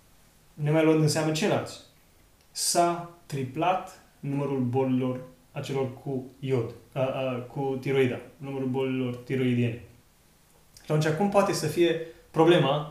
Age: 30-49